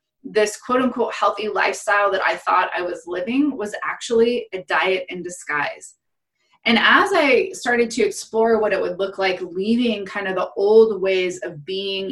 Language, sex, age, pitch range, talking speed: English, female, 20-39, 190-265 Hz, 175 wpm